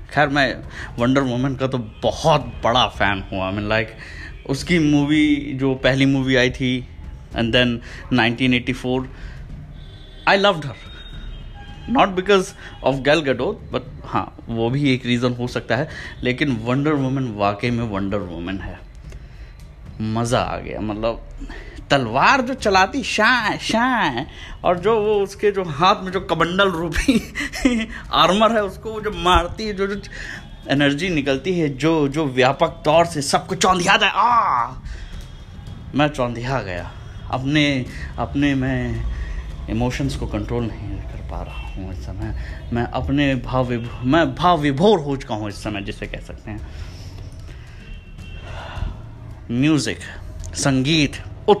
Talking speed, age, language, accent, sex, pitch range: 140 wpm, 20-39, Hindi, native, male, 105-150 Hz